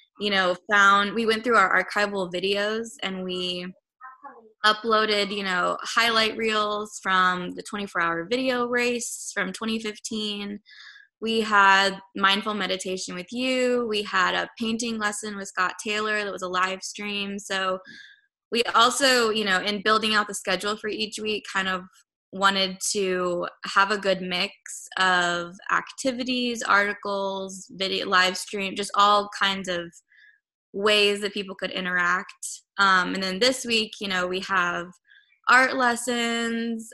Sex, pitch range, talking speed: female, 185-225 Hz, 145 wpm